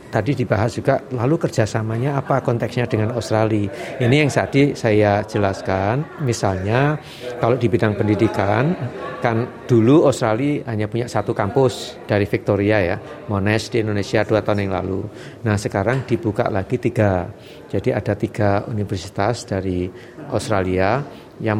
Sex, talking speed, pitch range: male, 135 wpm, 100-125 Hz